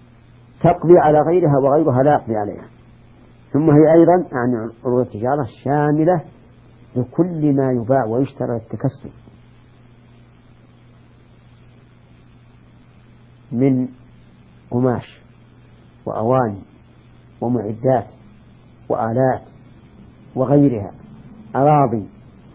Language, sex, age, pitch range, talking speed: Arabic, female, 50-69, 120-135 Hz, 70 wpm